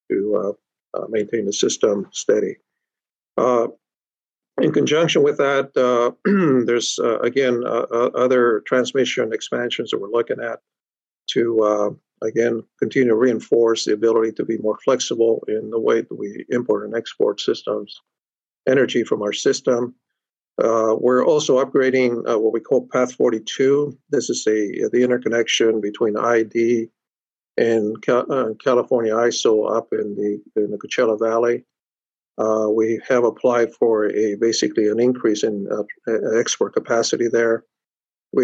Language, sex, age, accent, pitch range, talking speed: English, male, 50-69, American, 110-130 Hz, 140 wpm